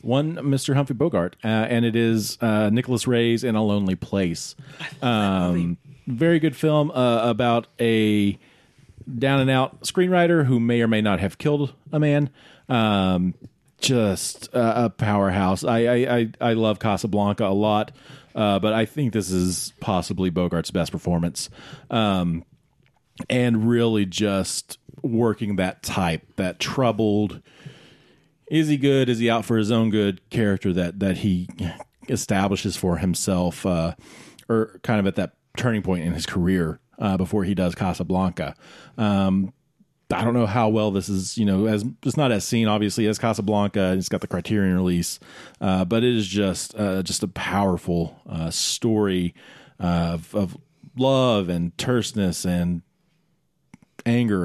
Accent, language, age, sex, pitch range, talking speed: American, English, 40-59, male, 95-120 Hz, 155 wpm